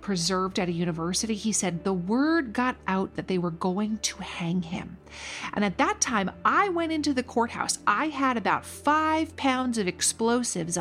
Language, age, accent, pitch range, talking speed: English, 40-59, American, 185-275 Hz, 185 wpm